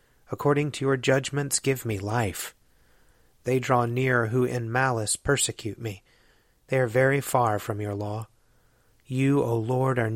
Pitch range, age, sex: 110-130 Hz, 30-49, male